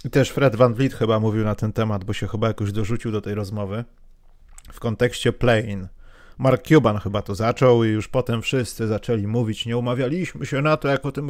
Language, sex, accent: Polish, male, native